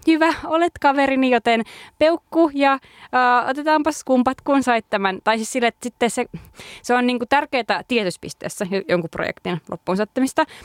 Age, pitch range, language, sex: 20-39, 180-250 Hz, Finnish, female